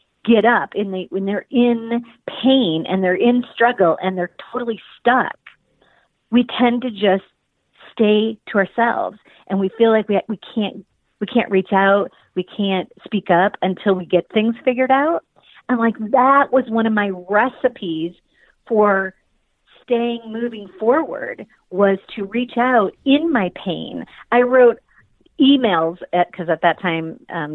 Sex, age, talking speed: female, 40-59, 155 wpm